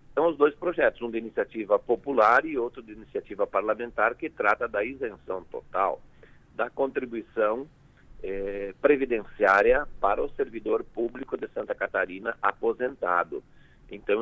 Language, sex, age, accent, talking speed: Portuguese, male, 50-69, Brazilian, 135 wpm